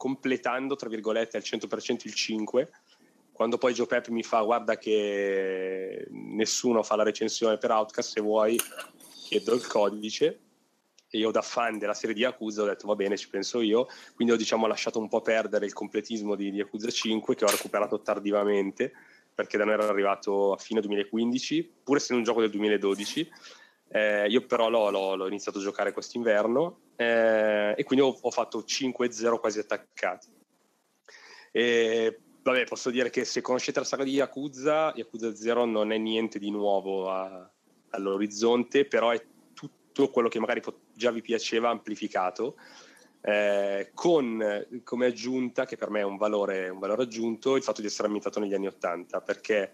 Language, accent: Italian, native